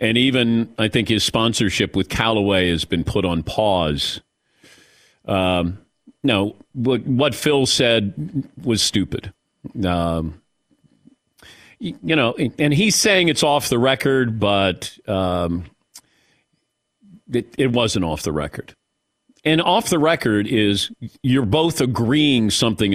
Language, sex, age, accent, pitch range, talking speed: English, male, 40-59, American, 95-135 Hz, 130 wpm